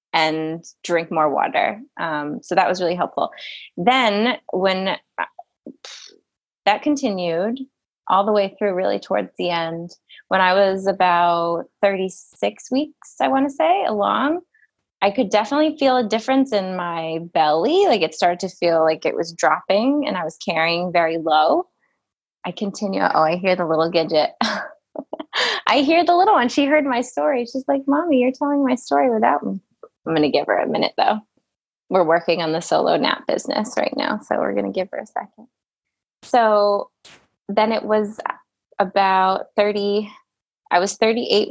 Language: English